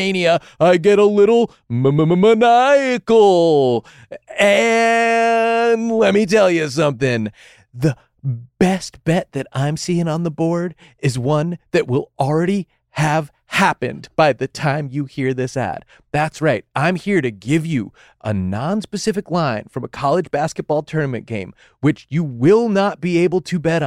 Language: English